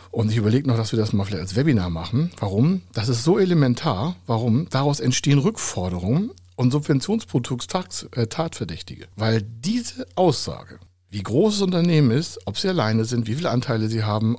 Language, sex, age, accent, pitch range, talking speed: German, male, 60-79, German, 105-140 Hz, 175 wpm